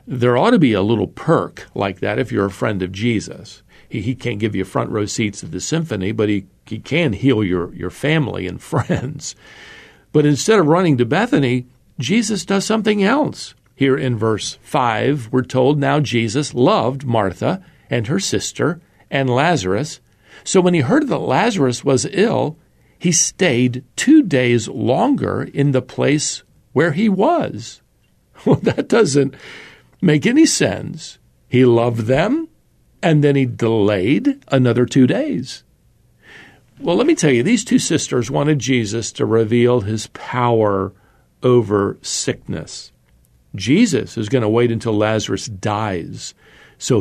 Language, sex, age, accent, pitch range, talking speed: English, male, 50-69, American, 110-145 Hz, 155 wpm